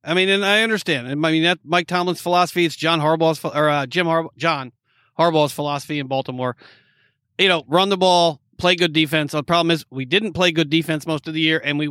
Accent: American